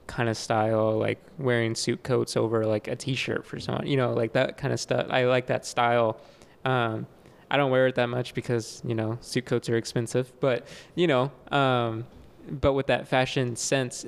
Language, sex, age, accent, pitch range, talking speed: English, male, 20-39, American, 120-140 Hz, 200 wpm